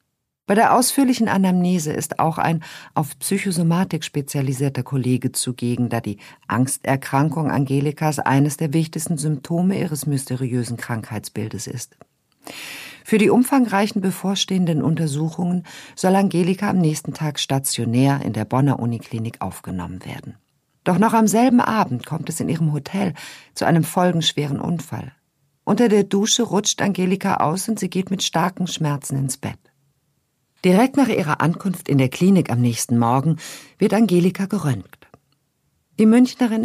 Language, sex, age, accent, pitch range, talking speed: German, female, 50-69, German, 135-190 Hz, 140 wpm